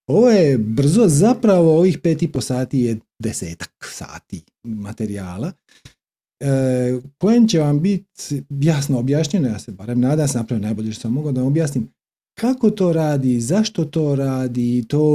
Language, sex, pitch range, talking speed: Croatian, male, 110-145 Hz, 155 wpm